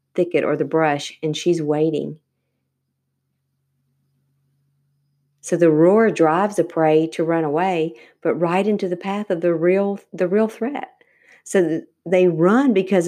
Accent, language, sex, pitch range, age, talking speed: American, English, female, 155-180 Hz, 40-59, 140 wpm